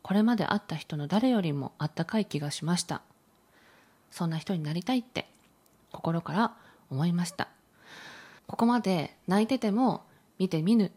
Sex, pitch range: female, 165-215 Hz